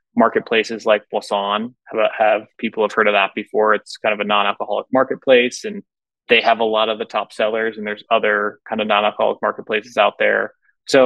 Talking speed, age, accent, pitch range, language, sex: 185 wpm, 20-39, American, 110-125 Hz, English, male